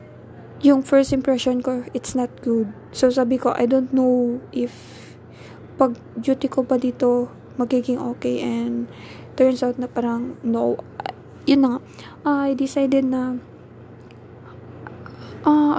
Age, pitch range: 20-39, 245-270 Hz